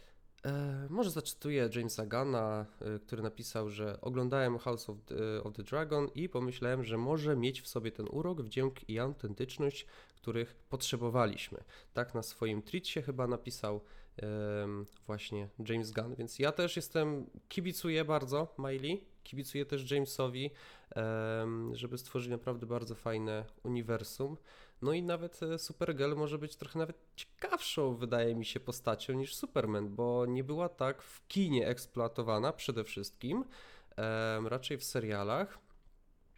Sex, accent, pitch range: male, native, 110-145 Hz